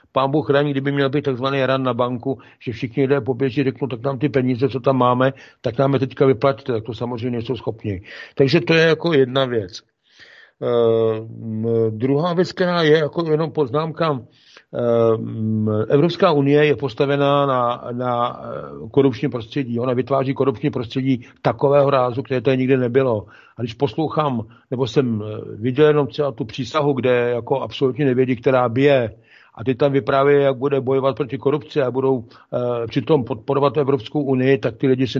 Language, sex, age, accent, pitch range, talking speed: Czech, male, 50-69, native, 125-145 Hz, 170 wpm